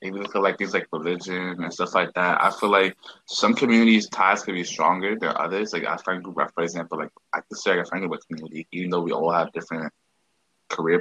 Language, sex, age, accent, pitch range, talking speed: English, male, 20-39, American, 90-110 Hz, 240 wpm